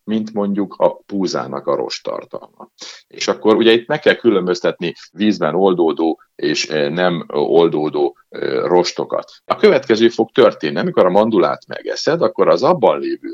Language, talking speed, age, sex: Hungarian, 140 wpm, 50-69, male